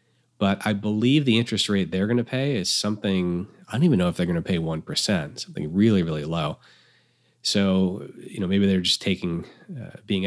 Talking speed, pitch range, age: 205 wpm, 85-115 Hz, 30-49